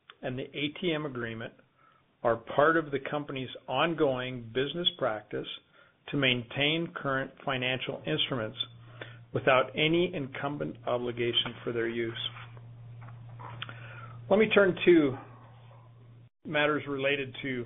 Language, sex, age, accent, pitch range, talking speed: English, male, 40-59, American, 120-145 Hz, 105 wpm